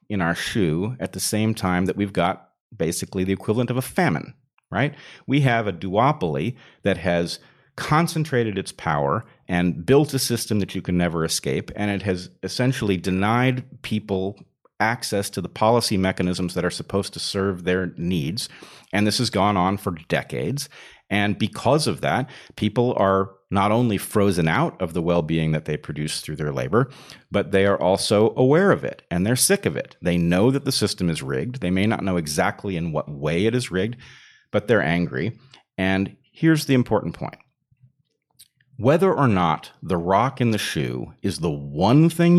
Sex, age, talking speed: male, 40-59, 185 wpm